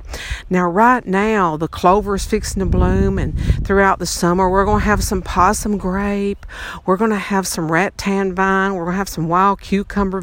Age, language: 50-69, English